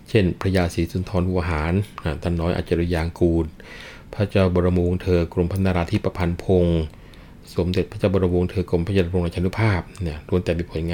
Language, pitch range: Thai, 85-95 Hz